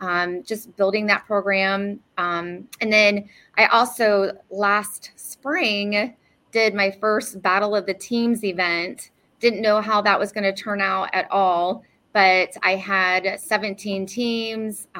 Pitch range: 190-215 Hz